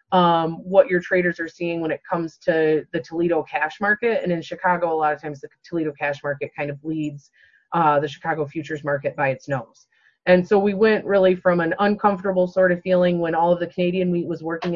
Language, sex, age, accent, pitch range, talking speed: English, female, 30-49, American, 160-190 Hz, 220 wpm